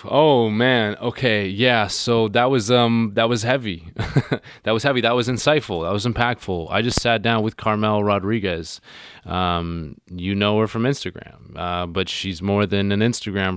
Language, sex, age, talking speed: English, male, 20-39, 175 wpm